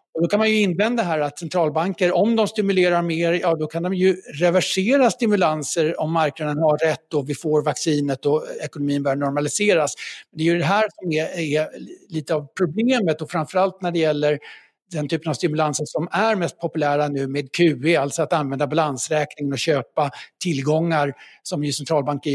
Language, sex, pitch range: Swedish, male, 150-185 Hz